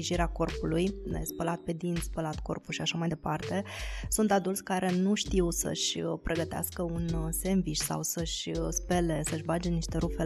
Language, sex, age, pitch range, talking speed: Romanian, female, 20-39, 165-190 Hz, 160 wpm